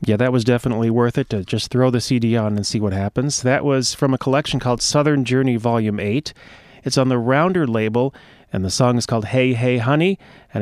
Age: 30-49